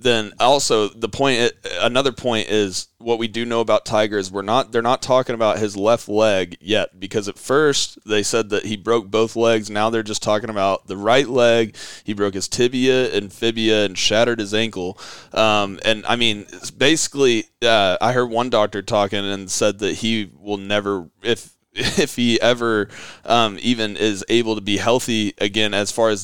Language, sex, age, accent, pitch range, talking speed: English, male, 20-39, American, 105-125 Hz, 195 wpm